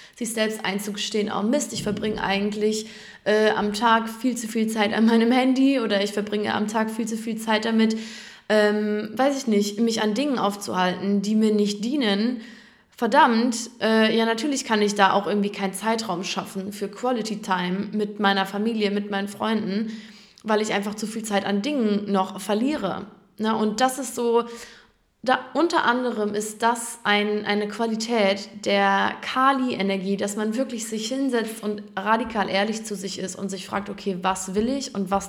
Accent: German